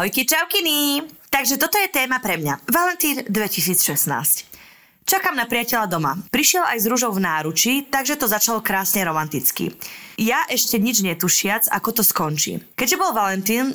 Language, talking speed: Slovak, 150 wpm